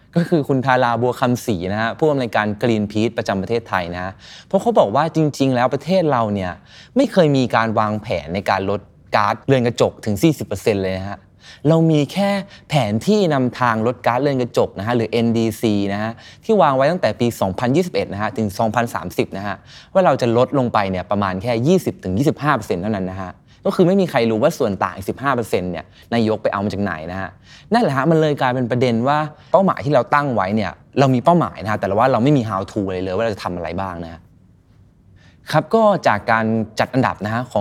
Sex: male